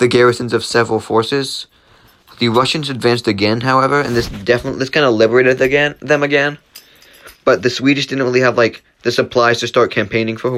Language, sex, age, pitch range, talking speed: English, male, 20-39, 110-130 Hz, 195 wpm